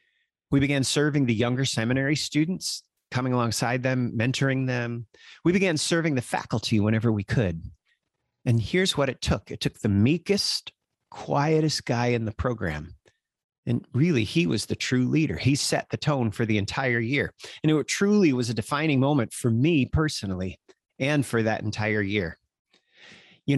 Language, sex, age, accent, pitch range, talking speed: English, male, 30-49, American, 105-140 Hz, 165 wpm